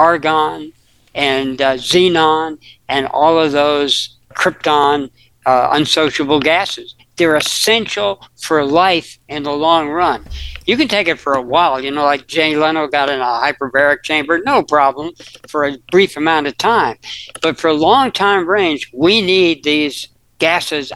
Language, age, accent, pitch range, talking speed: English, 60-79, American, 145-185 Hz, 155 wpm